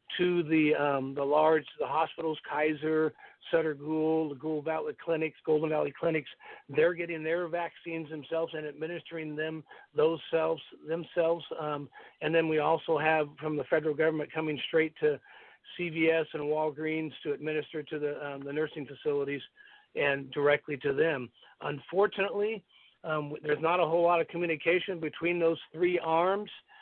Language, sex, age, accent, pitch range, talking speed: English, male, 50-69, American, 155-170 Hz, 155 wpm